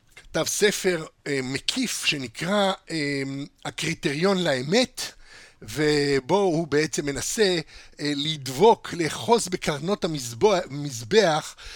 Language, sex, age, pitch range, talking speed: Hebrew, male, 60-79, 145-185 Hz, 85 wpm